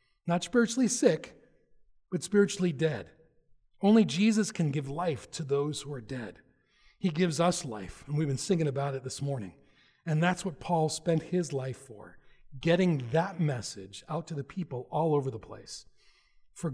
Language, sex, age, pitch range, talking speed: English, male, 40-59, 145-200 Hz, 170 wpm